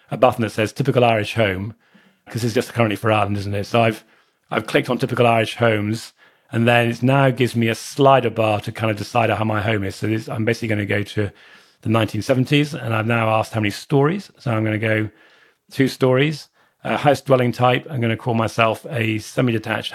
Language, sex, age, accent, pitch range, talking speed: English, male, 40-59, British, 110-125 Hz, 225 wpm